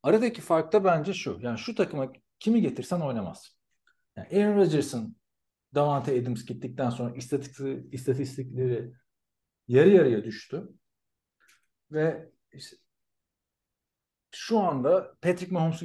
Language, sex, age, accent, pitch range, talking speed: Turkish, male, 50-69, native, 105-160 Hz, 105 wpm